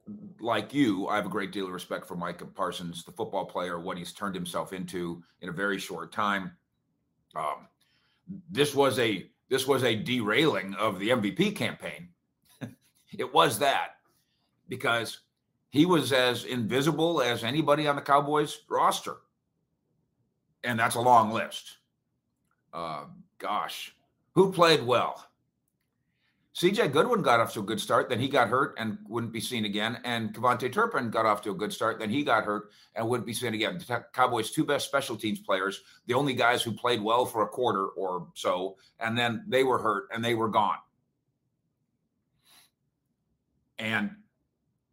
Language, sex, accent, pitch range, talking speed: English, male, American, 105-140 Hz, 165 wpm